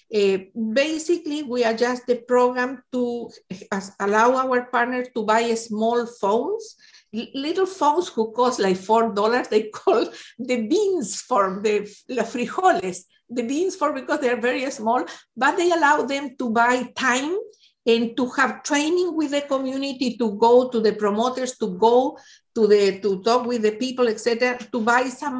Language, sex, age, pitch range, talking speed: English, female, 50-69, 215-270 Hz, 165 wpm